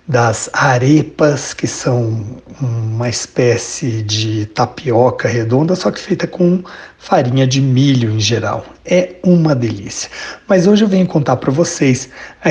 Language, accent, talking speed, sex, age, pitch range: Portuguese, Brazilian, 140 wpm, male, 60-79, 130-180 Hz